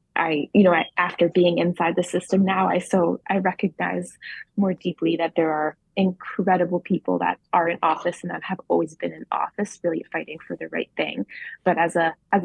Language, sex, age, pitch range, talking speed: English, female, 20-39, 155-180 Hz, 200 wpm